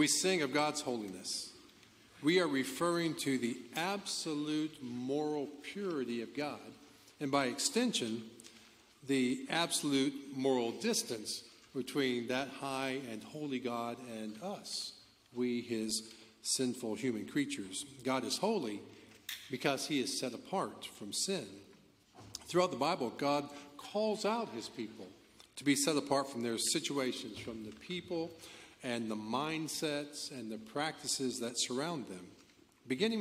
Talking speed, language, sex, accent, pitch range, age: 130 wpm, English, male, American, 115-150 Hz, 50-69